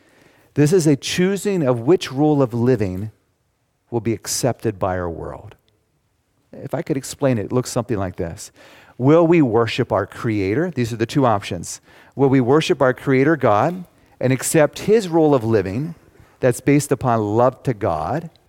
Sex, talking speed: male, 170 wpm